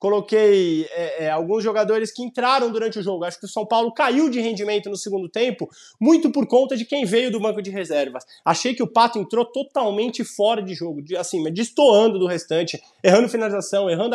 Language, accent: Portuguese, Brazilian